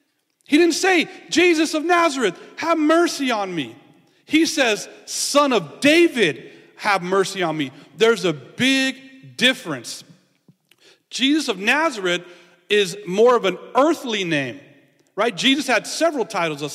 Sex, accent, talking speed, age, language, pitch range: male, American, 135 wpm, 40-59, English, 185-260 Hz